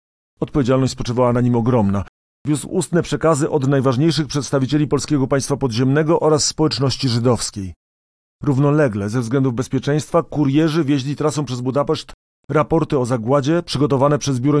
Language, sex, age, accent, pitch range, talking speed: Polish, male, 40-59, native, 120-150 Hz, 130 wpm